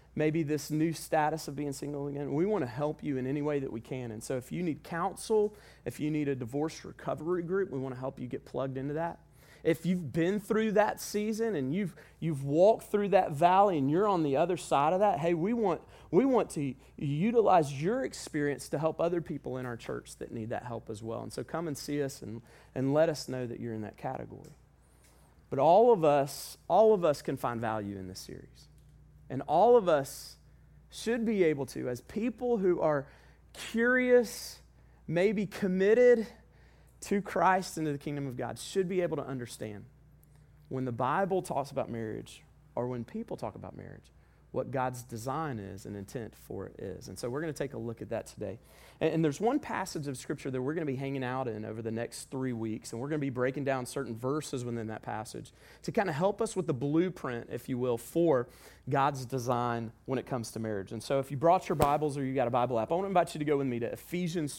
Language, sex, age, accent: English, male, 30-49, American